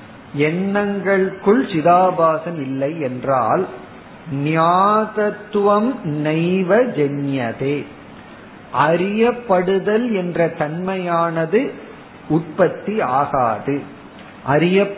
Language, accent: Tamil, native